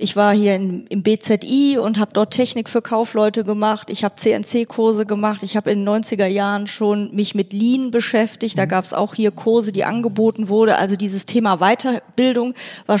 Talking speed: 195 wpm